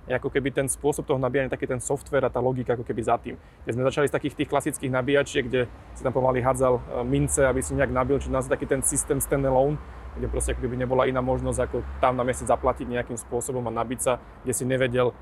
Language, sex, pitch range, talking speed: Slovak, male, 130-160 Hz, 240 wpm